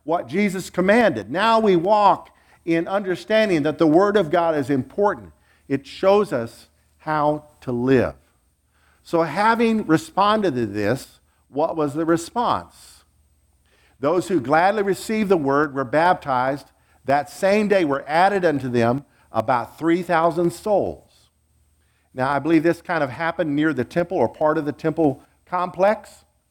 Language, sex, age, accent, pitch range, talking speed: English, male, 50-69, American, 120-185 Hz, 145 wpm